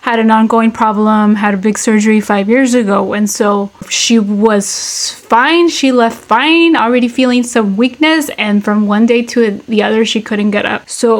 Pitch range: 210-240 Hz